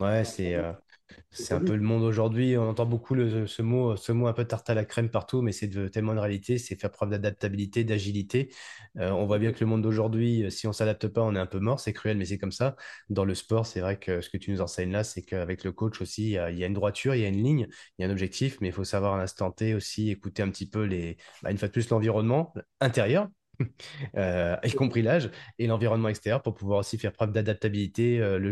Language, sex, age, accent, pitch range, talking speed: French, male, 20-39, French, 100-120 Hz, 270 wpm